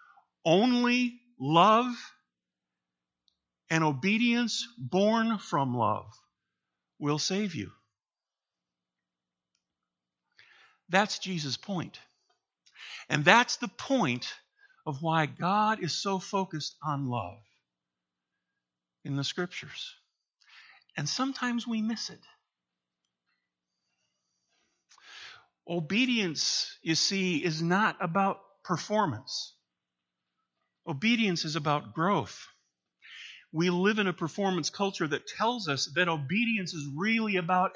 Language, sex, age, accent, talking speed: English, male, 50-69, American, 95 wpm